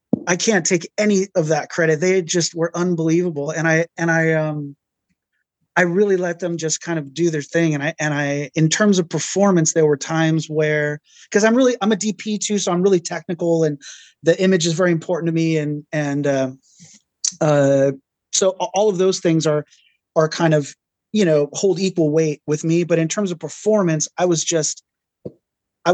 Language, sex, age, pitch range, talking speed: English, male, 30-49, 155-185 Hz, 200 wpm